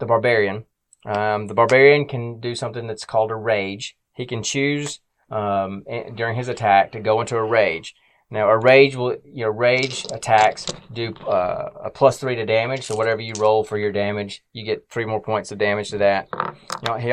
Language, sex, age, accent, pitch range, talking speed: English, male, 20-39, American, 105-125 Hz, 200 wpm